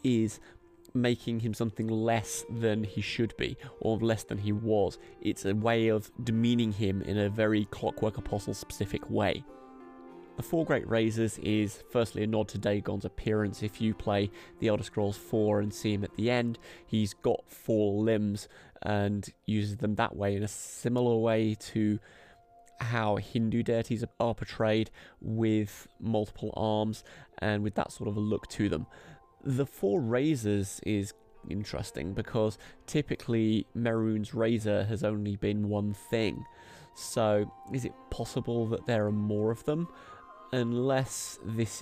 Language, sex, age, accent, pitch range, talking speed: English, male, 20-39, British, 105-115 Hz, 155 wpm